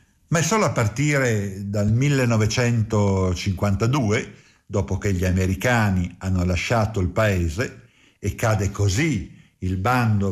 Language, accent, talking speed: Italian, native, 115 wpm